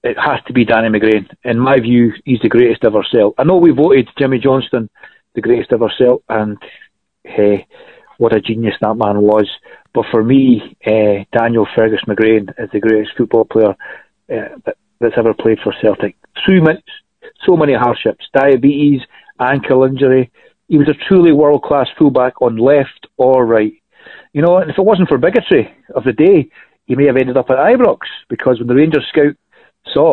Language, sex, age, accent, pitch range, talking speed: English, male, 40-59, British, 115-150 Hz, 180 wpm